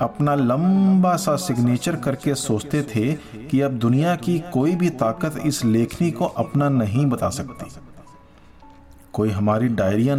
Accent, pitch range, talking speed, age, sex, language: native, 115-155 Hz, 140 wpm, 50-69, male, Hindi